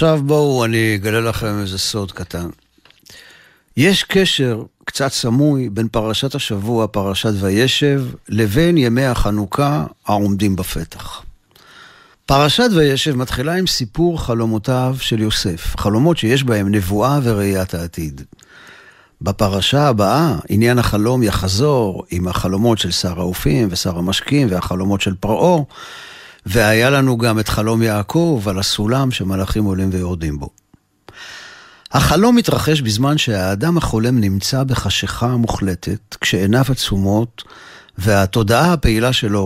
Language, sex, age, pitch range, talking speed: Hebrew, male, 50-69, 100-135 Hz, 115 wpm